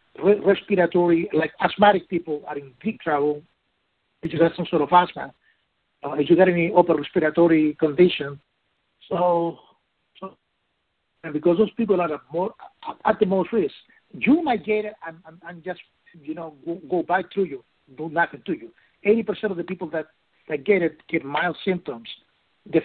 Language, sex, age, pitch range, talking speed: English, male, 60-79, 165-215 Hz, 175 wpm